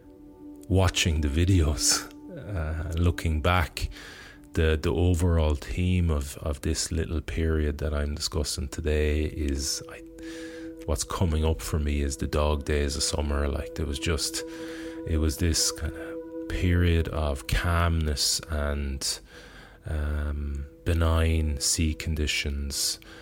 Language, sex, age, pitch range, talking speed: English, male, 30-49, 75-85 Hz, 125 wpm